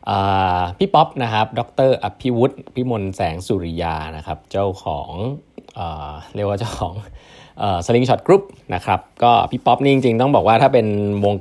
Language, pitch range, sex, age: Thai, 90-125 Hz, male, 20-39